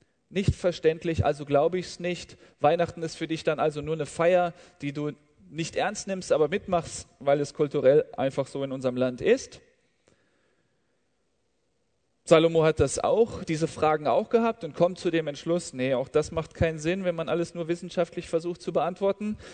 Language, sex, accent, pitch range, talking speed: German, male, German, 160-185 Hz, 180 wpm